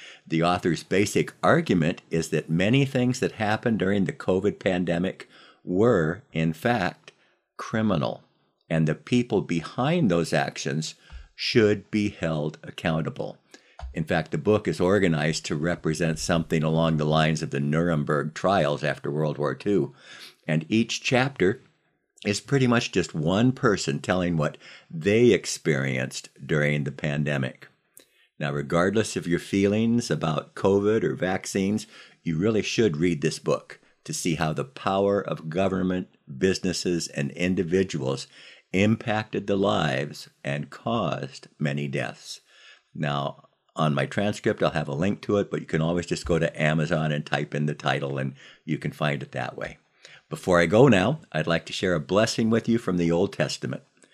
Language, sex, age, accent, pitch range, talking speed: English, male, 60-79, American, 75-100 Hz, 155 wpm